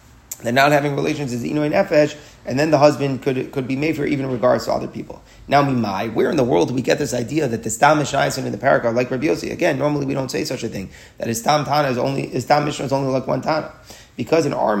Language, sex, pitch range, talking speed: English, male, 130-155 Hz, 270 wpm